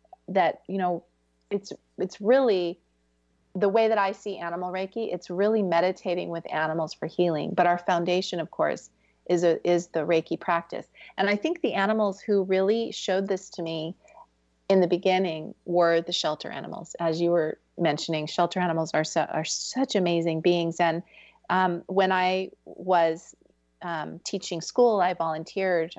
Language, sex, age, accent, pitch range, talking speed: English, female, 30-49, American, 165-205 Hz, 165 wpm